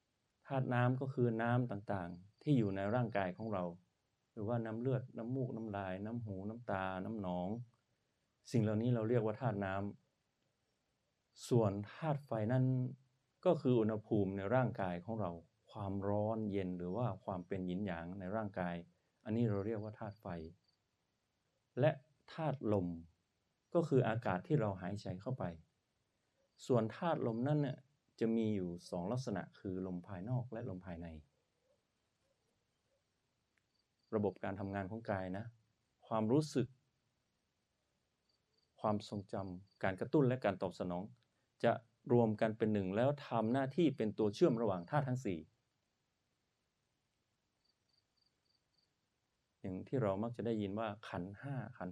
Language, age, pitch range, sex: Thai, 30-49, 95-125 Hz, male